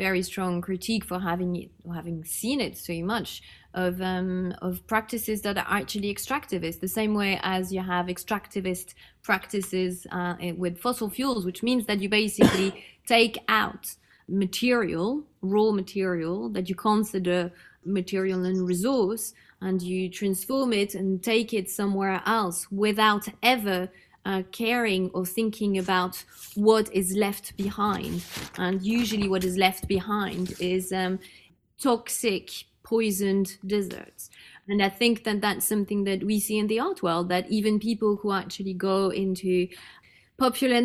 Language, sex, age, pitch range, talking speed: English, female, 20-39, 185-225 Hz, 145 wpm